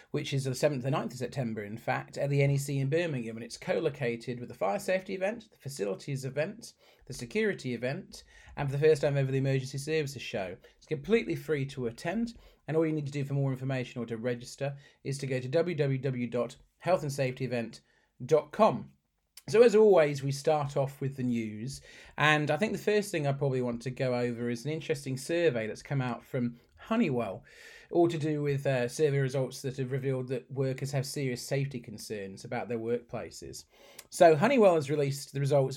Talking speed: 195 wpm